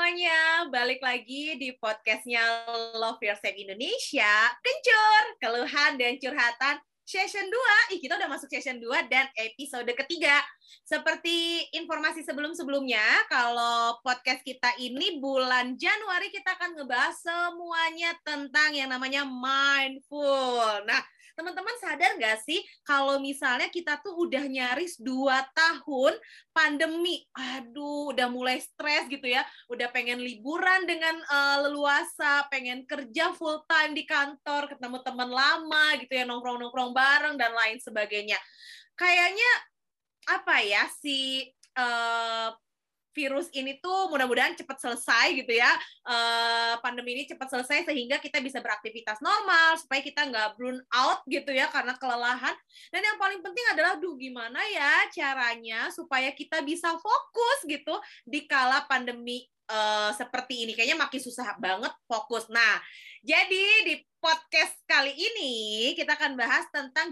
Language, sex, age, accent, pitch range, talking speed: Indonesian, female, 20-39, native, 250-325 Hz, 130 wpm